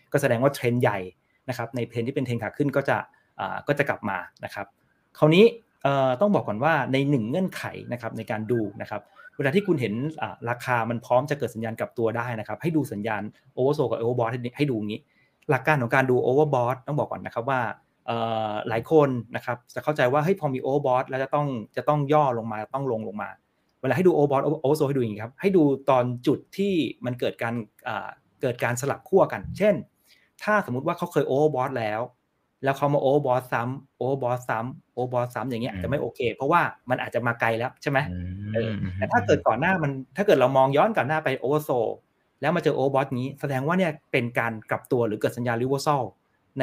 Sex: male